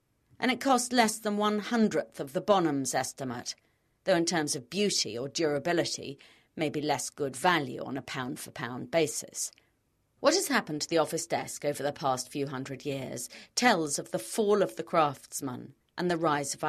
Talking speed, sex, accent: 180 wpm, female, British